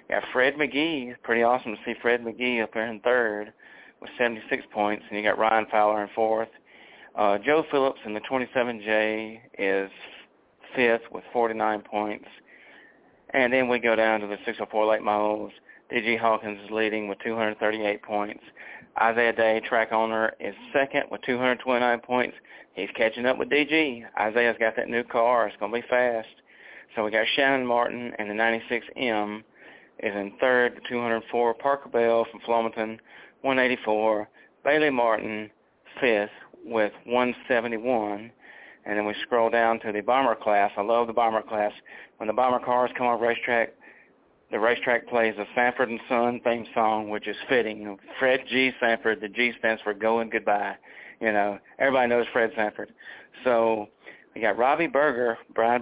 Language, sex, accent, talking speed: English, male, American, 160 wpm